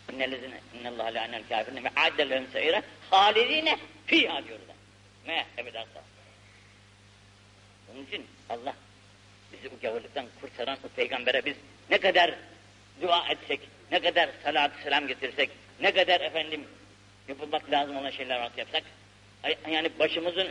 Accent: native